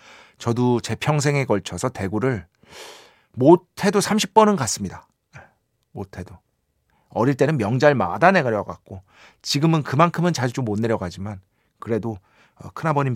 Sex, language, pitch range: male, Korean, 105-160 Hz